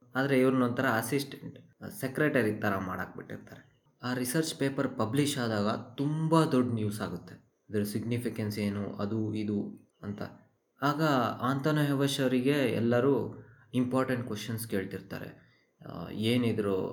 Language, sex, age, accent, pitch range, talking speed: Kannada, male, 20-39, native, 105-130 Hz, 110 wpm